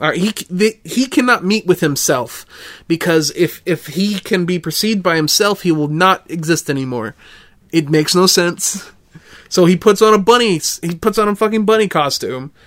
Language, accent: English, American